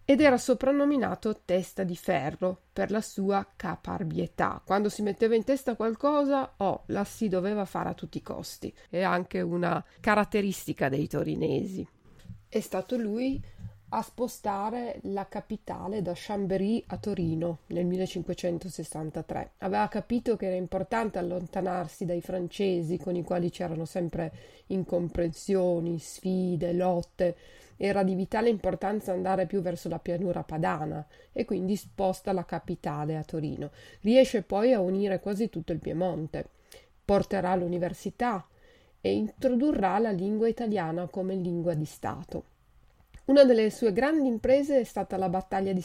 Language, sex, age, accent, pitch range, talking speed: Italian, female, 30-49, native, 175-220 Hz, 140 wpm